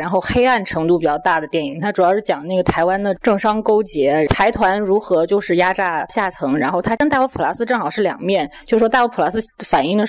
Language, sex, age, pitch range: Chinese, female, 20-39, 180-235 Hz